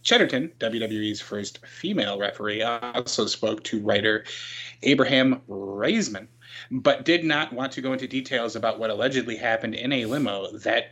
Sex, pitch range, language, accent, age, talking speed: male, 115-135 Hz, English, American, 20-39, 150 wpm